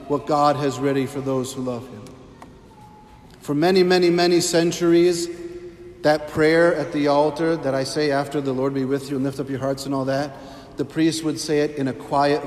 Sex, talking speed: male, 210 wpm